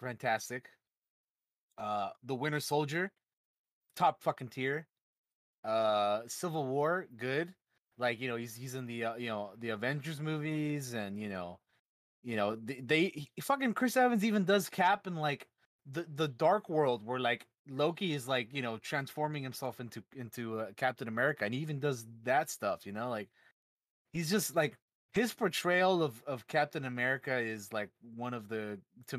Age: 30-49